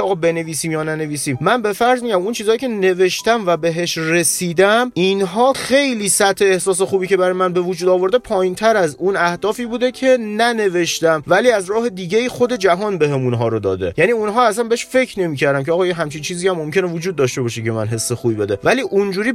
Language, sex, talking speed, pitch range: Persian, male, 205 wpm, 150-200 Hz